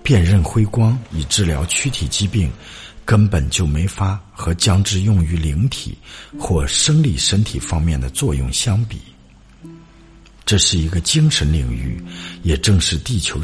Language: Chinese